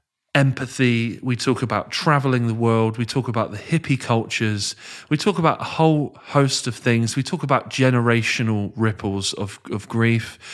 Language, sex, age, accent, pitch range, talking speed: English, male, 20-39, British, 105-125 Hz, 165 wpm